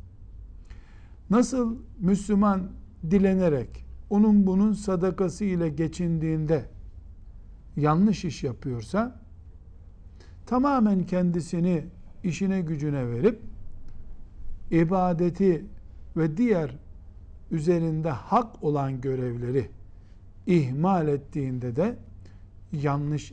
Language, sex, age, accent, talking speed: Turkish, male, 60-79, native, 70 wpm